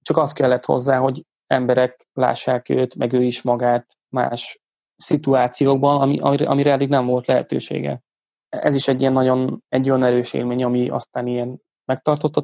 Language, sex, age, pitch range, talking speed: Hungarian, male, 20-39, 125-135 Hz, 160 wpm